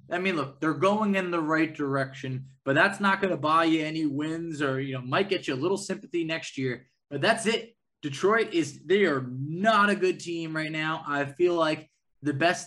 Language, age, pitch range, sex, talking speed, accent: English, 20-39, 140-175 Hz, male, 225 wpm, American